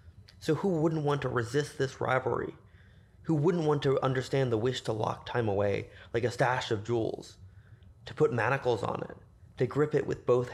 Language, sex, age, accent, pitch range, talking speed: English, male, 20-39, American, 110-150 Hz, 195 wpm